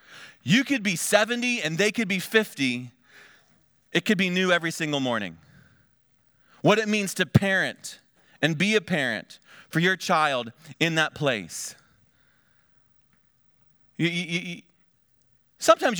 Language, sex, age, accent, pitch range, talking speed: English, male, 30-49, American, 140-210 Hz, 120 wpm